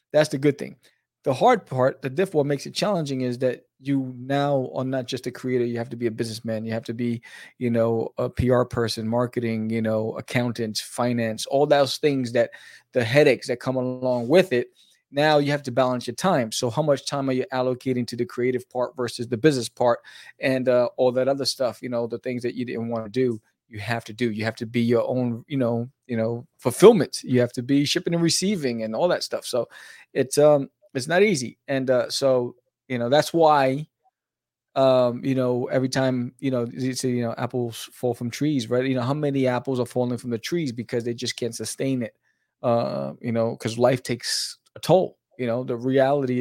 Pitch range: 120-135 Hz